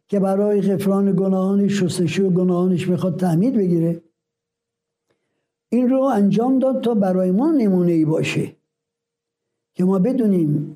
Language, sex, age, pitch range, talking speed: Persian, male, 60-79, 170-215 Hz, 115 wpm